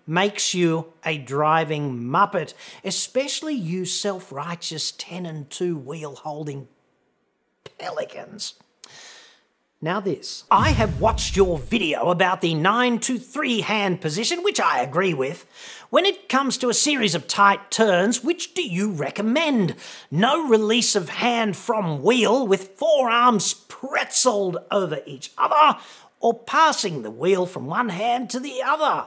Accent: Australian